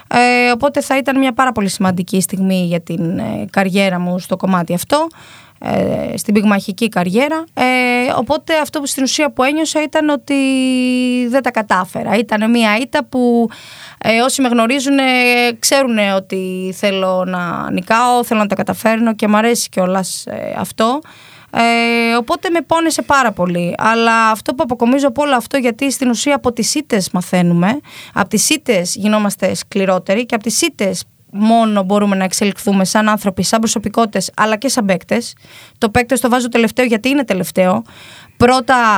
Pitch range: 205-265 Hz